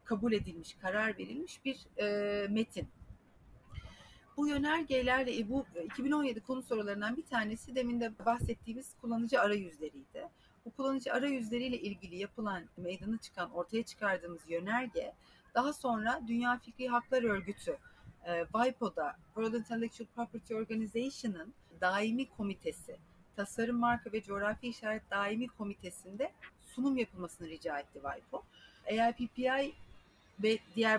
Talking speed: 115 wpm